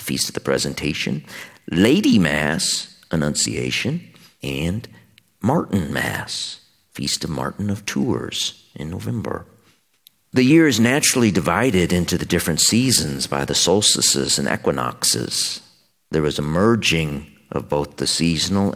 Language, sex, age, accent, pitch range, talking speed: English, male, 50-69, American, 75-105 Hz, 125 wpm